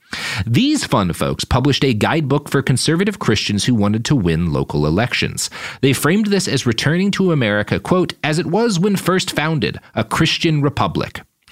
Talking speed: 165 wpm